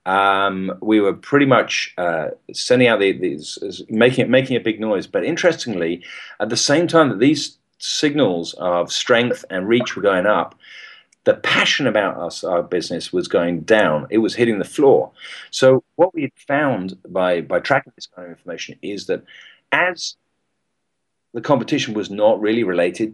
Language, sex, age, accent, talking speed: English, male, 40-59, British, 175 wpm